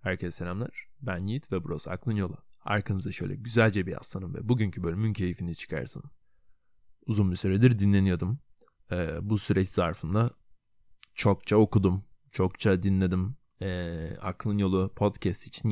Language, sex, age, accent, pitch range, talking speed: Turkish, male, 20-39, native, 90-110 Hz, 125 wpm